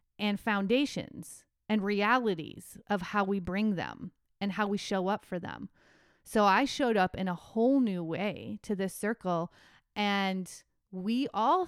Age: 30-49